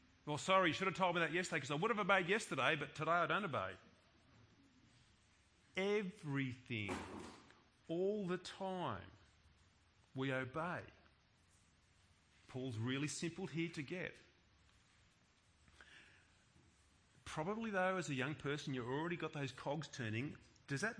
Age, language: 40-59, English